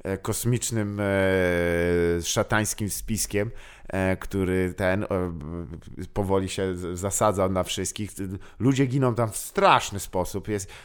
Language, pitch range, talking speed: Polish, 100-135 Hz, 95 wpm